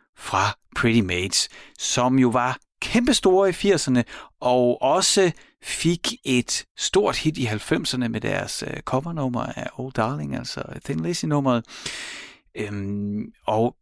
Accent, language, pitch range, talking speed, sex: native, Danish, 100-135 Hz, 125 wpm, male